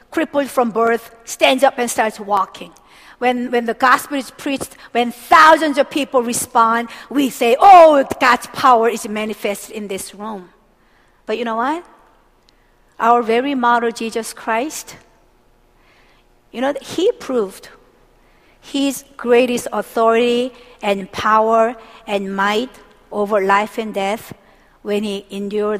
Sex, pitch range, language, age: female, 215-275 Hz, Korean, 50-69